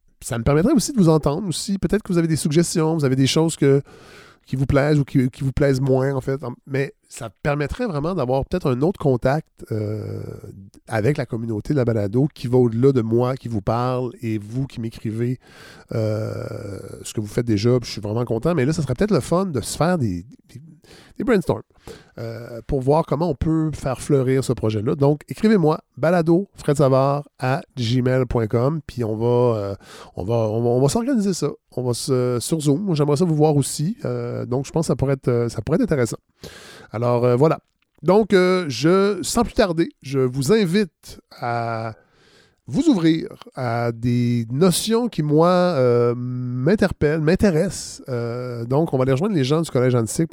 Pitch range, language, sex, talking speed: 120-160 Hz, French, male, 195 wpm